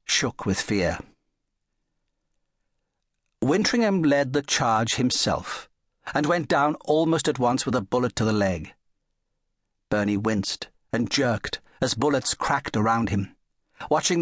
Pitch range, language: 105-135 Hz, English